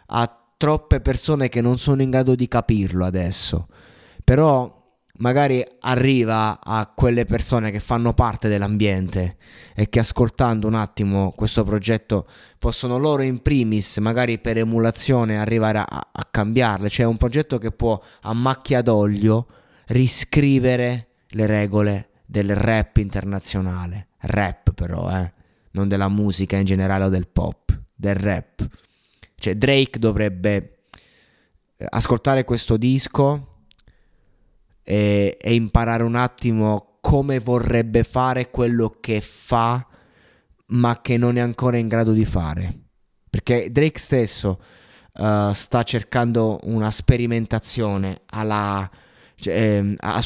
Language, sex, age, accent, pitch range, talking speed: Italian, male, 20-39, native, 100-120 Hz, 120 wpm